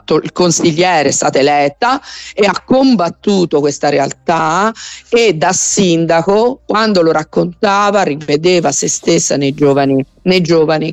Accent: native